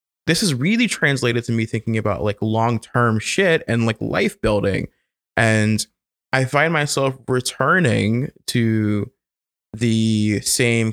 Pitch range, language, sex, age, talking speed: 105-125 Hz, English, male, 20-39, 125 wpm